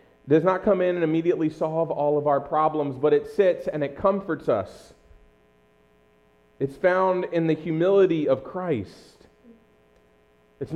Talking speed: 145 wpm